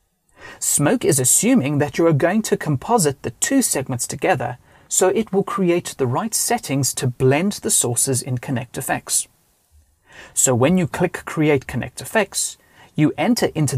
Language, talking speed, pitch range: English, 150 wpm, 125-165 Hz